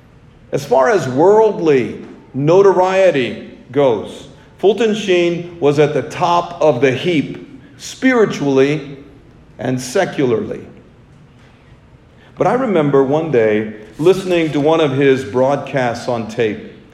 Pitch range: 130-190 Hz